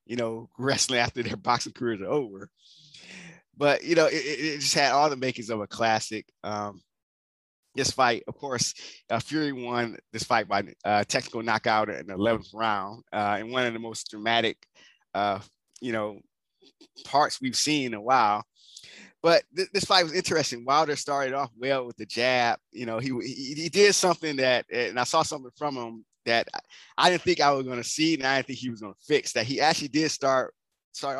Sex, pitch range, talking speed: male, 115-150 Hz, 210 wpm